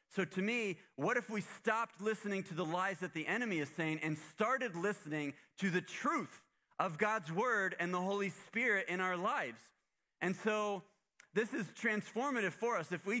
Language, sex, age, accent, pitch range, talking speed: English, male, 30-49, American, 165-205 Hz, 185 wpm